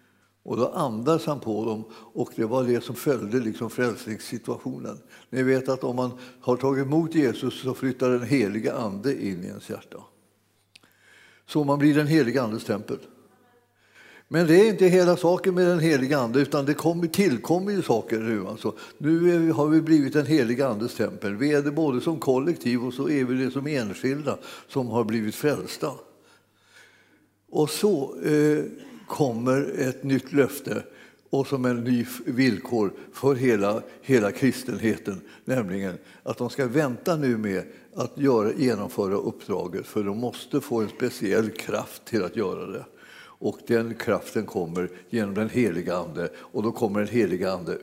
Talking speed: 165 wpm